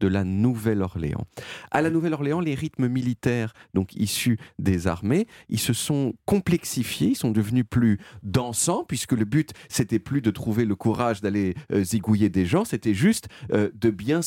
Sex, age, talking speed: male, 40-59, 170 wpm